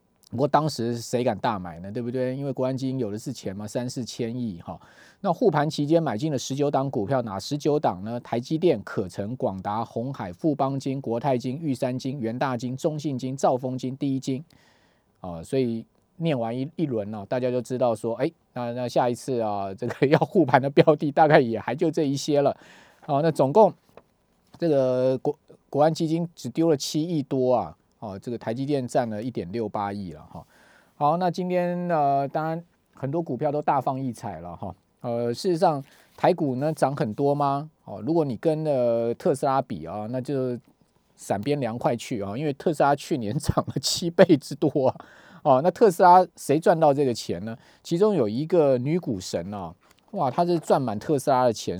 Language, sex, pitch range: Chinese, male, 115-150 Hz